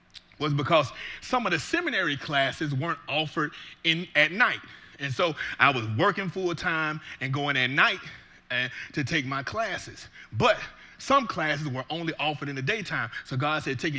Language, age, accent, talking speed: English, 30-49, American, 175 wpm